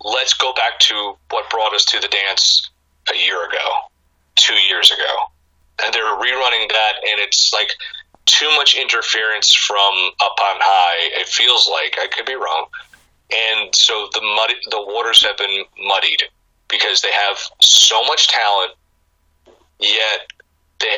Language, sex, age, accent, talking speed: English, male, 30-49, American, 155 wpm